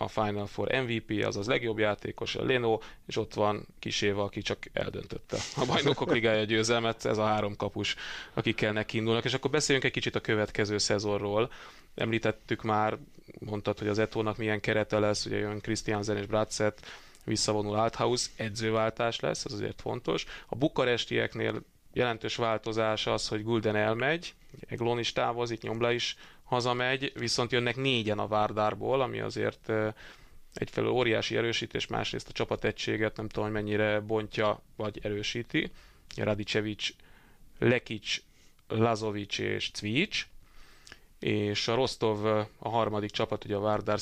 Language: Hungarian